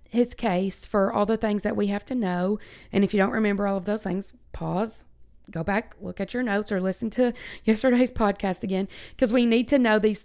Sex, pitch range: female, 195-230 Hz